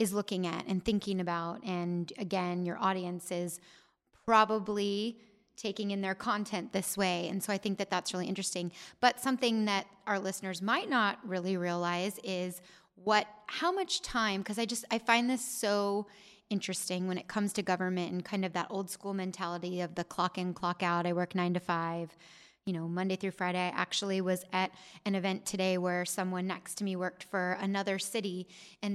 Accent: American